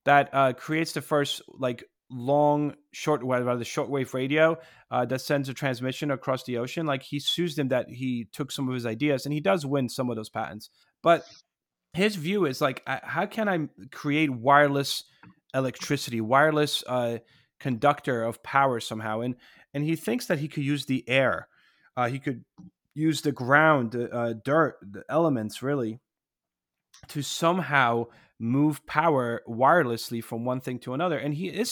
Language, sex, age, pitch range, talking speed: English, male, 30-49, 120-155 Hz, 180 wpm